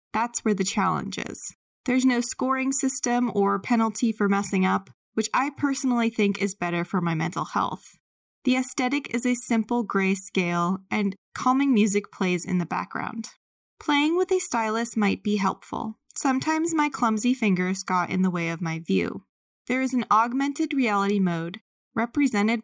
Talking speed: 165 wpm